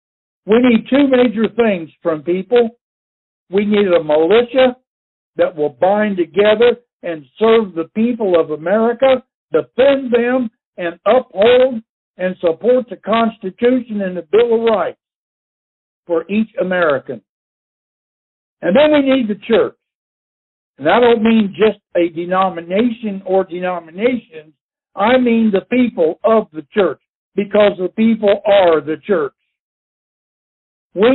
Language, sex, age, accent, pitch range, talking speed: English, male, 60-79, American, 170-240 Hz, 125 wpm